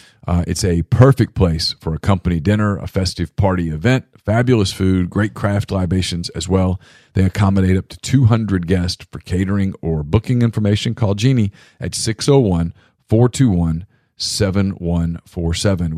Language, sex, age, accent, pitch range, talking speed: English, male, 40-59, American, 90-115 Hz, 130 wpm